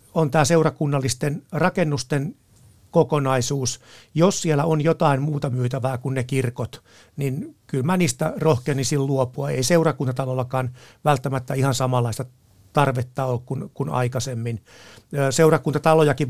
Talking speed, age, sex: 110 wpm, 60-79, male